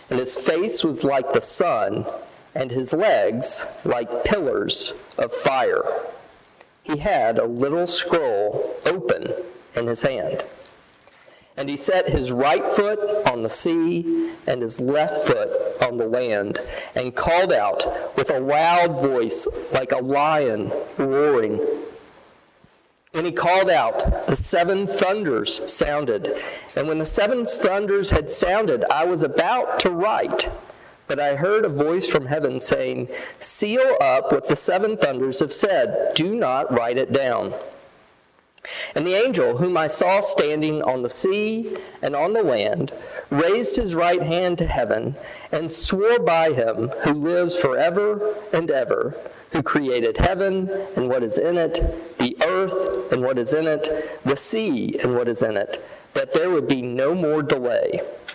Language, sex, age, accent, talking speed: English, male, 40-59, American, 155 wpm